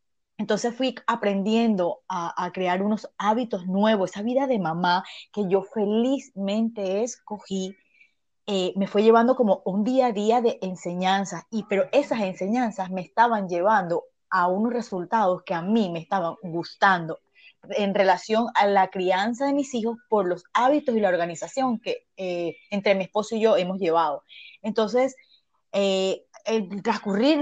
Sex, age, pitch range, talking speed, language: female, 30-49, 195-255 Hz, 155 wpm, Spanish